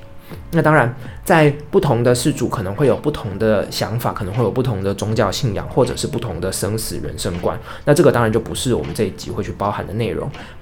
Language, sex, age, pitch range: Chinese, male, 20-39, 110-135 Hz